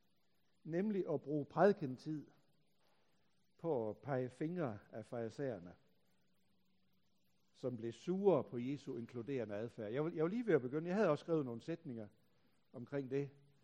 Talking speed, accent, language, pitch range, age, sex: 135 wpm, native, Danish, 110-150 Hz, 60-79, male